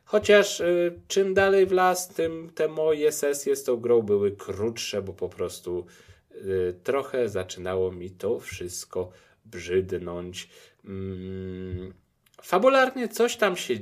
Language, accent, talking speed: Polish, native, 125 wpm